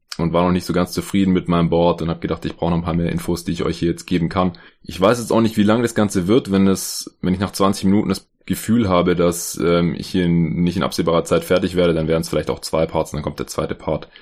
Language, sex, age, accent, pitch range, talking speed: German, male, 20-39, German, 85-100 Hz, 295 wpm